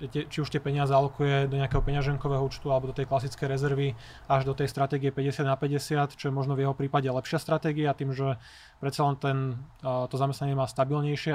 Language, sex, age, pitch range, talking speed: Slovak, male, 20-39, 135-145 Hz, 205 wpm